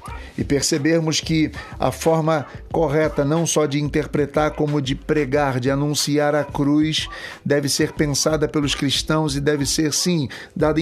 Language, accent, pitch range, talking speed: Portuguese, Brazilian, 150-185 Hz, 150 wpm